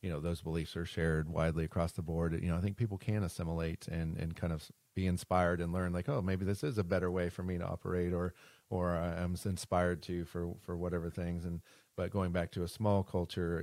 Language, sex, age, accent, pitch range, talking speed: English, male, 30-49, American, 80-90 Hz, 240 wpm